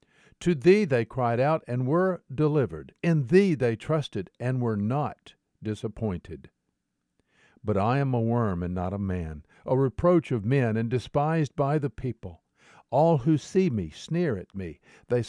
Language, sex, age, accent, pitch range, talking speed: English, male, 50-69, American, 100-140 Hz, 165 wpm